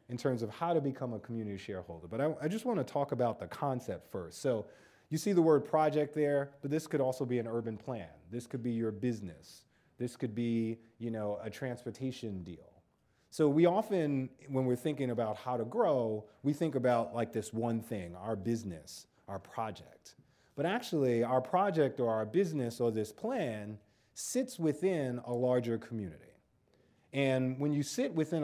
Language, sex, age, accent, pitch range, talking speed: English, male, 30-49, American, 110-150 Hz, 190 wpm